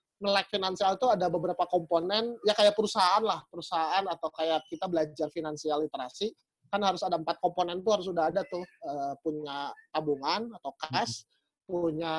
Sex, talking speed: male, 160 wpm